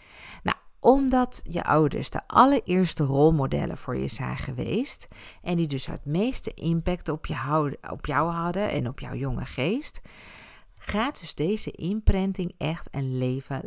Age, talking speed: 50-69, 150 wpm